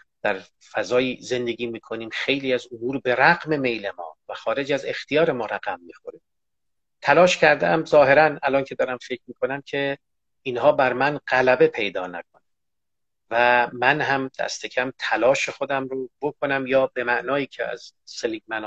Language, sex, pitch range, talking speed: Persian, male, 120-145 Hz, 150 wpm